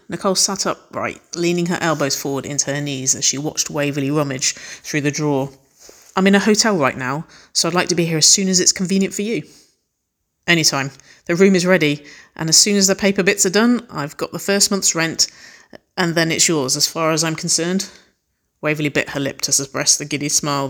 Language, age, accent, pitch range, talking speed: English, 30-49, British, 140-175 Hz, 220 wpm